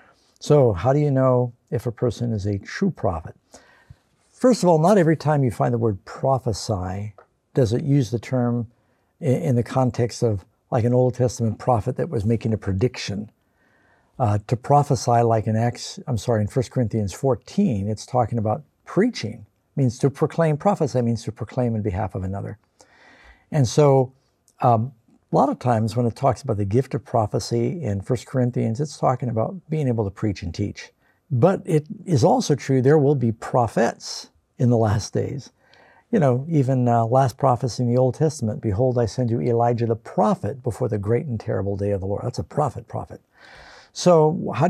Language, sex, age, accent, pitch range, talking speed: English, male, 60-79, American, 110-135 Hz, 190 wpm